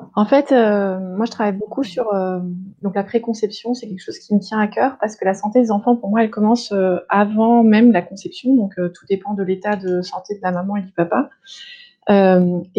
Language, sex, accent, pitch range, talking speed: French, female, French, 180-230 Hz, 235 wpm